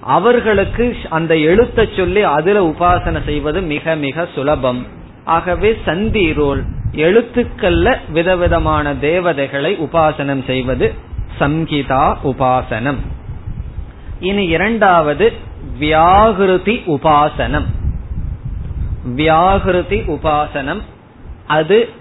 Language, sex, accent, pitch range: Tamil, male, native, 140-195 Hz